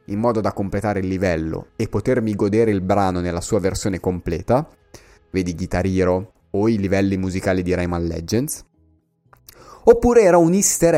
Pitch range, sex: 95-125 Hz, male